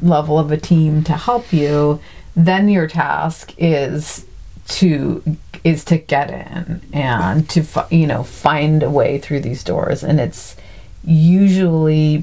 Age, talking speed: 40-59, 140 wpm